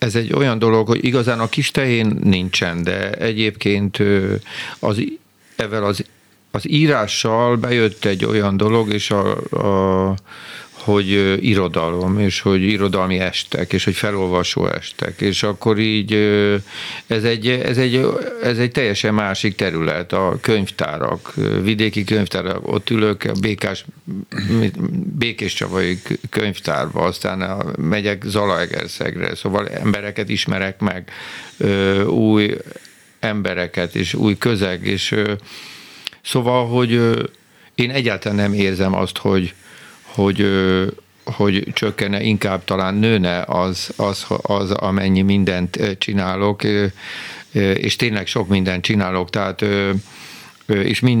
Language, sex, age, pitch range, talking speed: Hungarian, male, 50-69, 95-110 Hz, 105 wpm